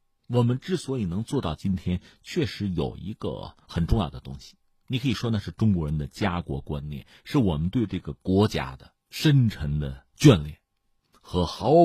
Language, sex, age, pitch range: Chinese, male, 50-69, 80-120 Hz